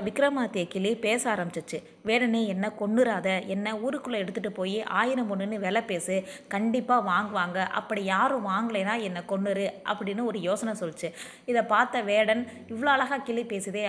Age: 20-39